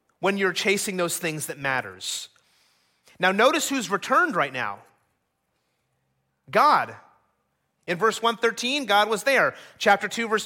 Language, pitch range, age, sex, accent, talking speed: English, 195-255 Hz, 30-49, male, American, 130 wpm